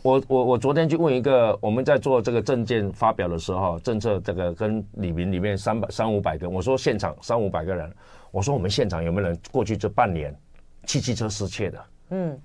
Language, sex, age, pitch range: Chinese, male, 50-69, 100-145 Hz